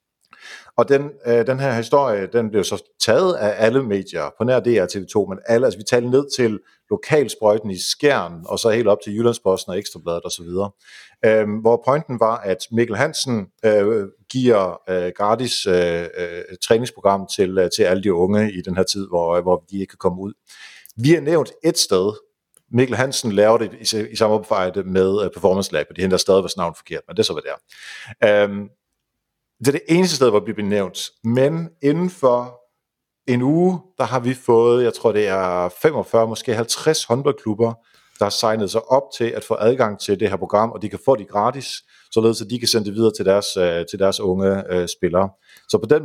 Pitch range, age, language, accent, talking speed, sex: 100-125 Hz, 50-69, Danish, native, 205 wpm, male